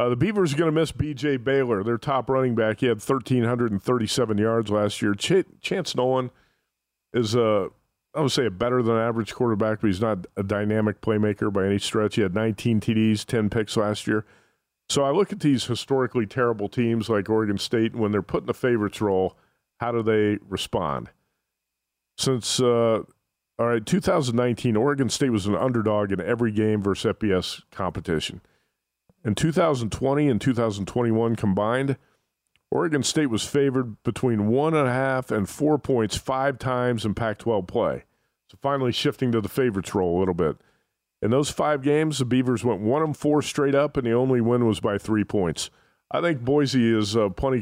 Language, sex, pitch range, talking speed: English, male, 105-130 Hz, 180 wpm